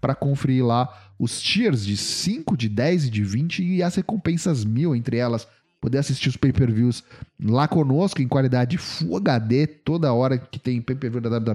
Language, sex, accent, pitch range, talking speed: Portuguese, male, Brazilian, 115-165 Hz, 175 wpm